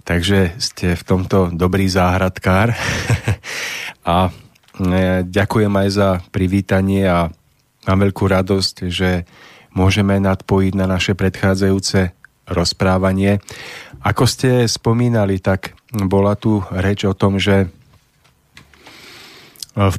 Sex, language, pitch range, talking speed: male, Slovak, 95-110 Hz, 100 wpm